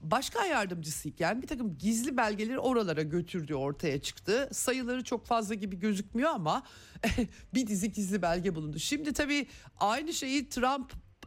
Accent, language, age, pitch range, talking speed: native, Turkish, 50-69, 155-215 Hz, 140 wpm